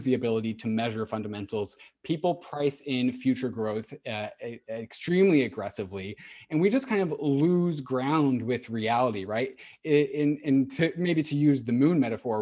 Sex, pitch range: male, 120-145 Hz